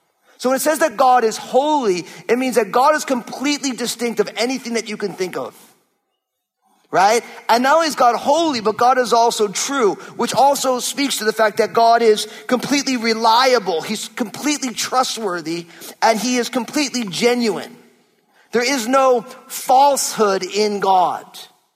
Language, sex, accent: English, male, American